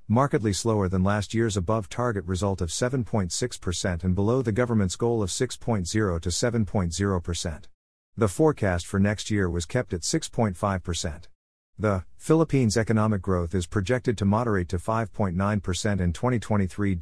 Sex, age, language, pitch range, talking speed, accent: male, 50-69, English, 90-115 Hz, 140 wpm, American